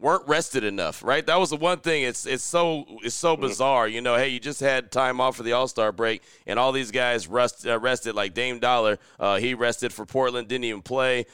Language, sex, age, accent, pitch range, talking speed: English, male, 30-49, American, 110-130 Hz, 245 wpm